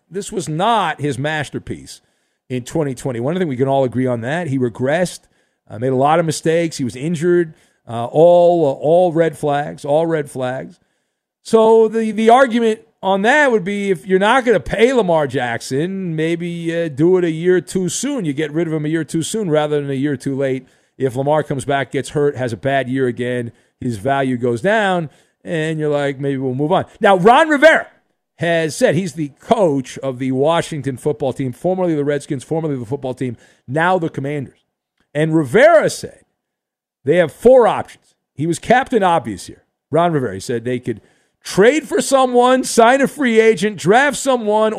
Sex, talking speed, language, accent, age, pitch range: male, 195 wpm, English, American, 50-69, 135-205 Hz